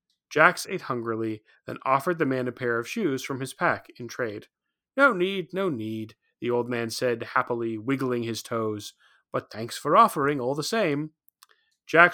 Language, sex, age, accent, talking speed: English, male, 30-49, American, 180 wpm